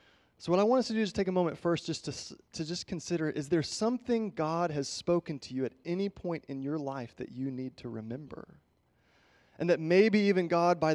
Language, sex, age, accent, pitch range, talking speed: English, male, 30-49, American, 125-165 Hz, 235 wpm